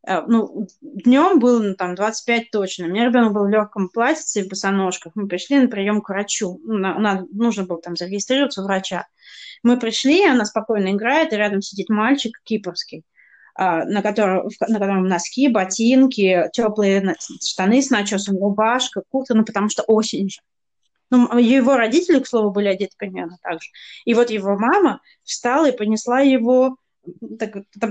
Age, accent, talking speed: 20-39, native, 165 wpm